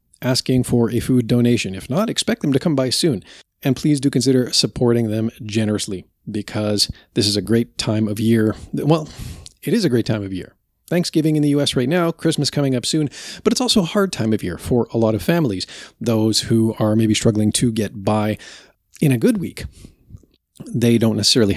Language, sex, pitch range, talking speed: English, male, 105-130 Hz, 205 wpm